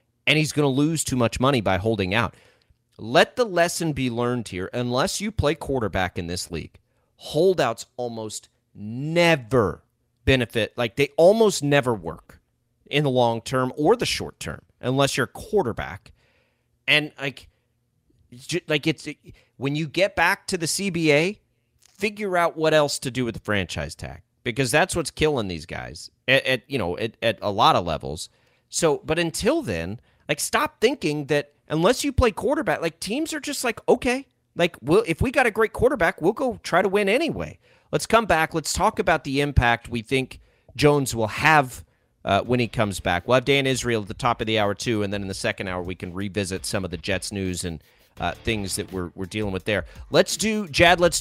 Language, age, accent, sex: English, 30-49, American, male